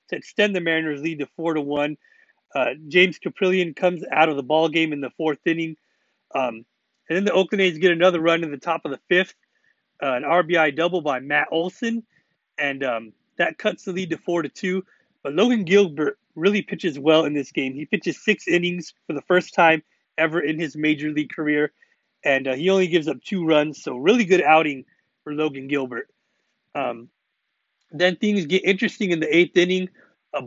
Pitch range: 155-185 Hz